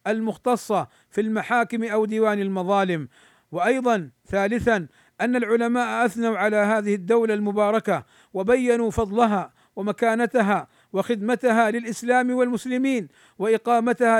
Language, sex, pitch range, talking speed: Arabic, male, 195-235 Hz, 95 wpm